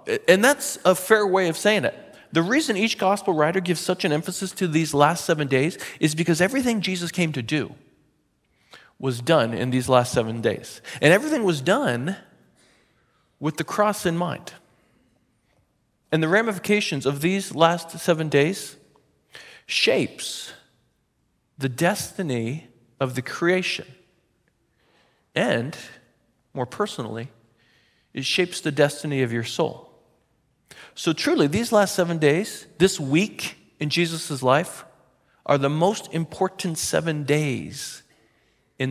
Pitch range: 135-190 Hz